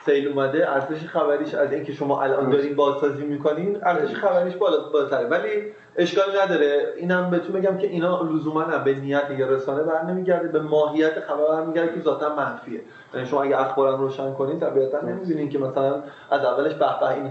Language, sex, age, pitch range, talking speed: Persian, male, 30-49, 135-190 Hz, 165 wpm